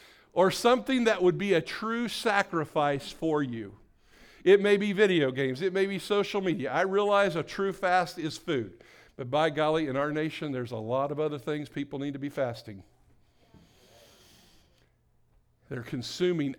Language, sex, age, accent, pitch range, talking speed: English, male, 50-69, American, 135-165 Hz, 165 wpm